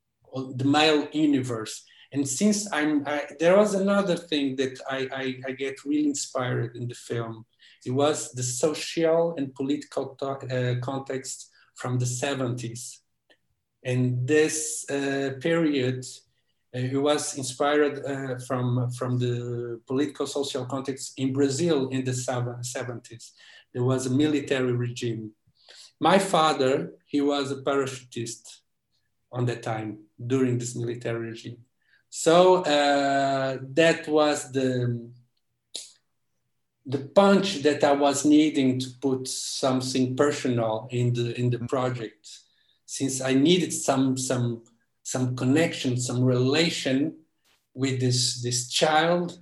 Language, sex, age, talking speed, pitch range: English, male, 50-69, 125 wpm, 125-145 Hz